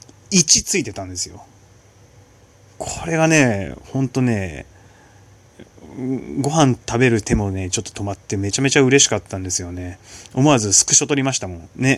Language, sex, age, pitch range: Japanese, male, 20-39, 100-130 Hz